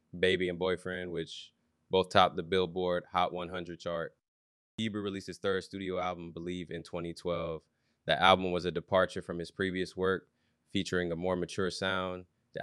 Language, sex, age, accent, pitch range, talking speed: English, male, 20-39, American, 85-95 Hz, 165 wpm